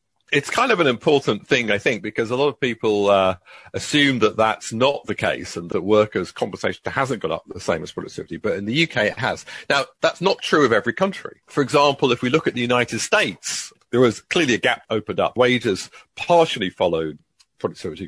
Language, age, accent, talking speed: English, 40-59, British, 210 wpm